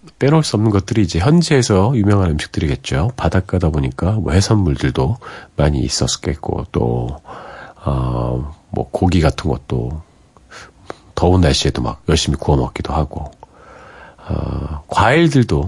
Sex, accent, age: male, native, 40-59